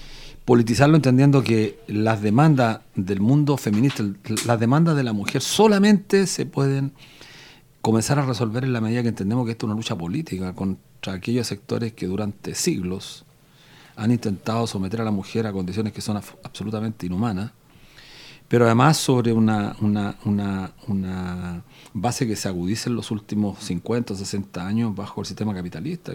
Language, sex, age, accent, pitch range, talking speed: Spanish, male, 40-59, Mexican, 100-130 Hz, 155 wpm